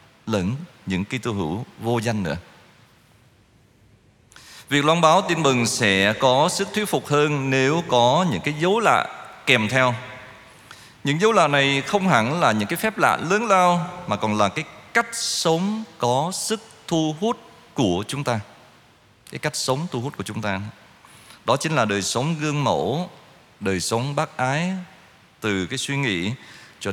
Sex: male